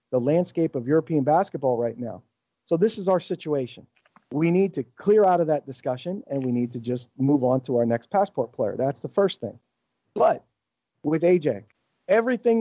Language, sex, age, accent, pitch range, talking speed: Polish, male, 40-59, American, 135-175 Hz, 190 wpm